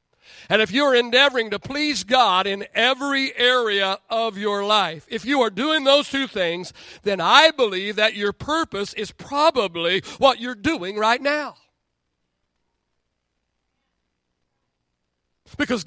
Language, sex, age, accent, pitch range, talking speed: English, male, 50-69, American, 165-235 Hz, 130 wpm